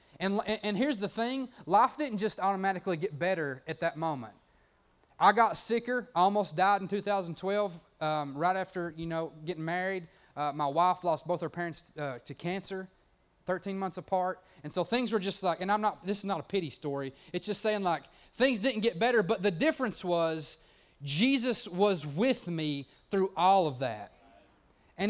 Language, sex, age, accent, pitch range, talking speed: English, male, 30-49, American, 155-195 Hz, 185 wpm